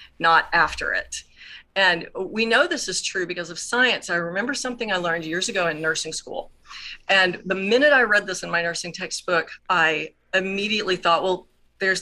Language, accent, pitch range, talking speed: English, American, 170-205 Hz, 185 wpm